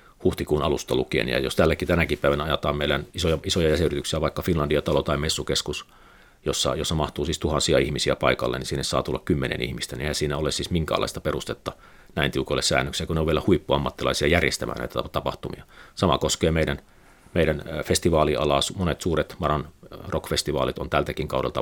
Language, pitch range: Finnish, 70-85 Hz